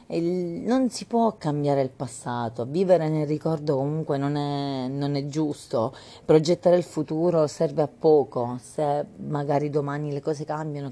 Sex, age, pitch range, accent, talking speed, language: female, 30-49, 135-170 Hz, native, 145 wpm, Italian